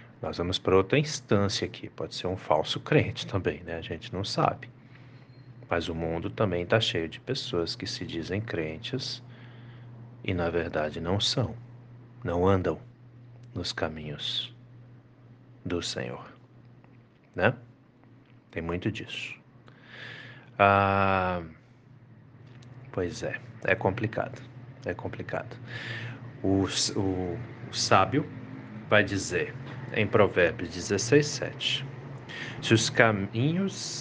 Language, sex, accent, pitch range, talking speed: Portuguese, male, Brazilian, 95-130 Hz, 115 wpm